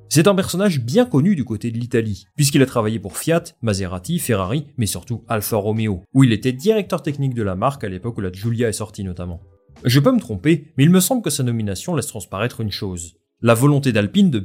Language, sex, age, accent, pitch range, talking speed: French, male, 30-49, French, 100-145 Hz, 230 wpm